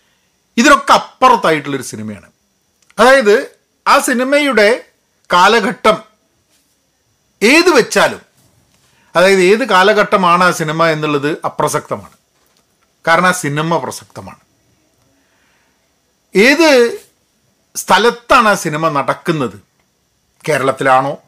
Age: 40-59